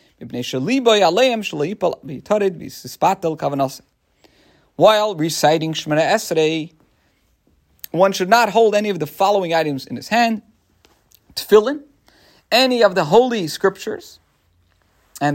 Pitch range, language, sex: 150-225 Hz, English, male